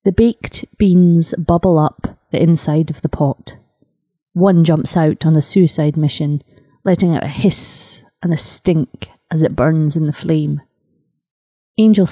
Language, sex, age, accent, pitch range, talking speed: English, female, 30-49, British, 155-185 Hz, 155 wpm